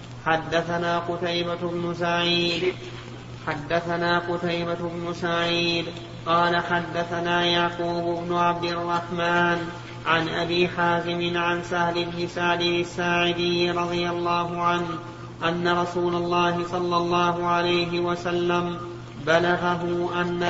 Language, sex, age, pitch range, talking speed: Arabic, male, 30-49, 170-180 Hz, 100 wpm